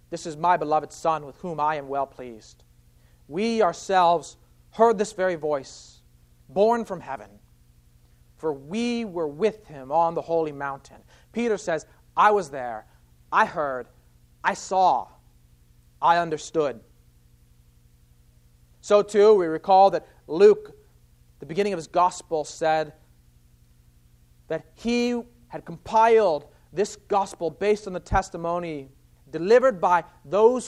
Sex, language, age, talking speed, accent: male, English, 40-59, 130 wpm, American